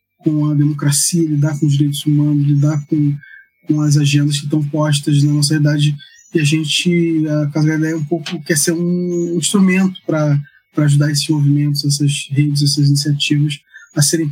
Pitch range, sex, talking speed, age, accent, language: 145-175 Hz, male, 170 wpm, 20-39, Brazilian, Portuguese